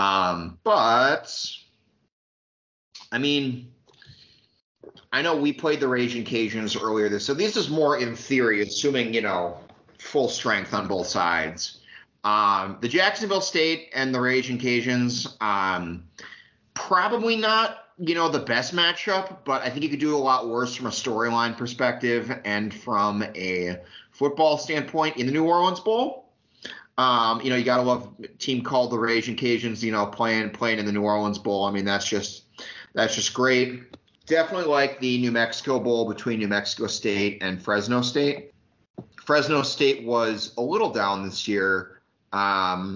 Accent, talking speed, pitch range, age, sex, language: American, 165 wpm, 105-145 Hz, 30-49, male, English